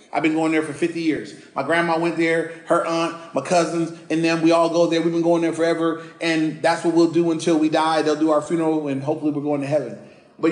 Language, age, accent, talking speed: English, 30-49, American, 255 wpm